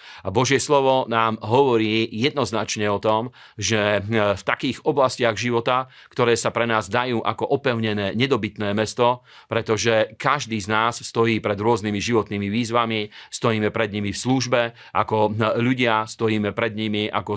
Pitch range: 110-125 Hz